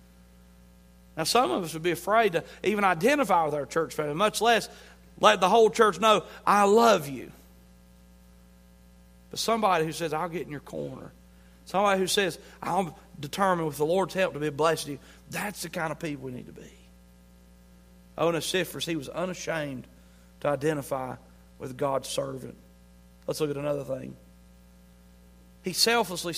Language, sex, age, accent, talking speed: English, male, 40-59, American, 165 wpm